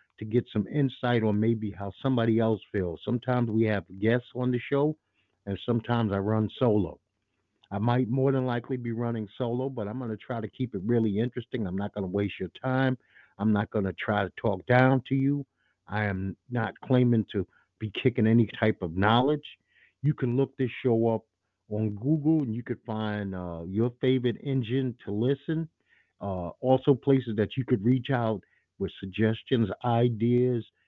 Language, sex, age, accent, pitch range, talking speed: English, male, 50-69, American, 105-130 Hz, 190 wpm